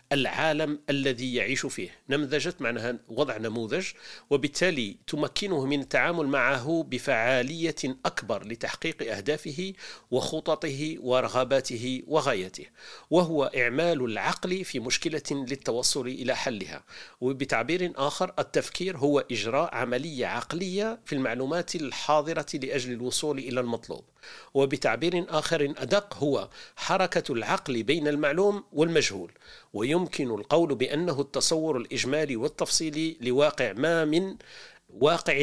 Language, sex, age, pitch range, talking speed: Arabic, male, 50-69, 125-155 Hz, 105 wpm